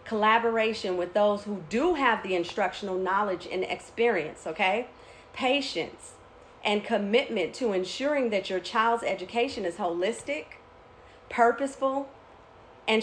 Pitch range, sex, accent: 195-245 Hz, female, American